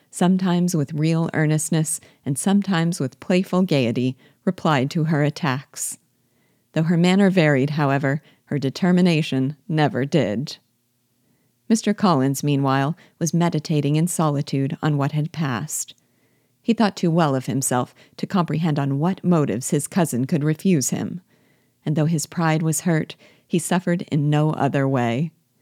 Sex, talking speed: female, 145 wpm